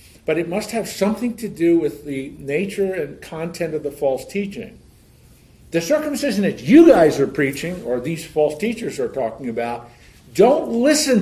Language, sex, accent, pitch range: English, male, American, 150-230 Hz